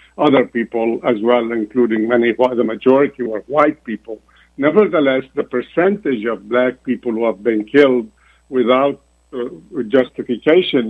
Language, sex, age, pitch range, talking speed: Arabic, male, 70-89, 115-135 Hz, 130 wpm